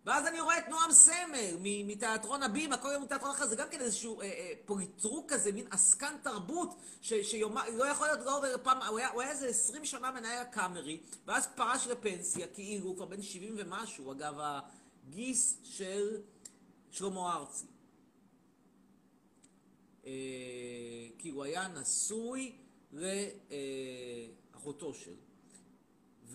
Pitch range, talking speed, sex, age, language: 185-275 Hz, 140 wpm, male, 40-59, Hebrew